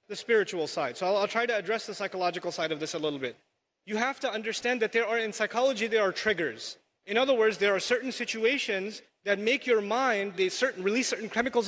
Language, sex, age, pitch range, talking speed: English, male, 30-49, 215-260 Hz, 230 wpm